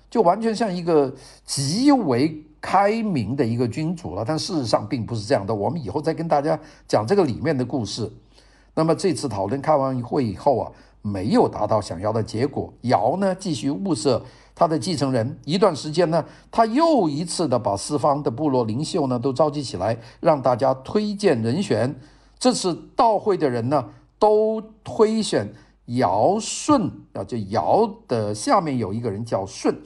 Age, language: 50-69, Chinese